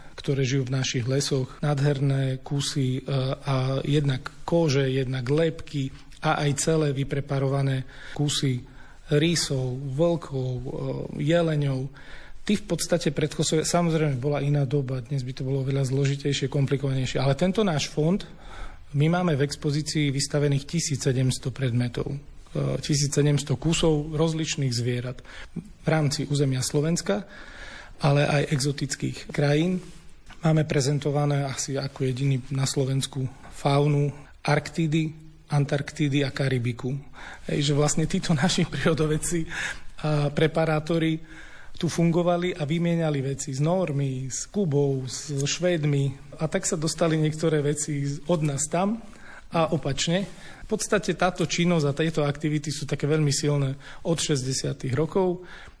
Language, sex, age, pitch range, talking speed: Slovak, male, 40-59, 140-160 Hz, 120 wpm